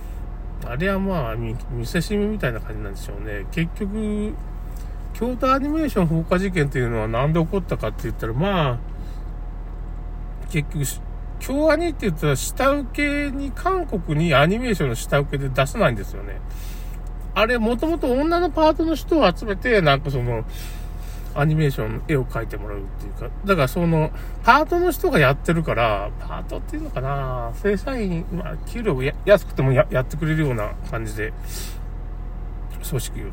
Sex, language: male, Japanese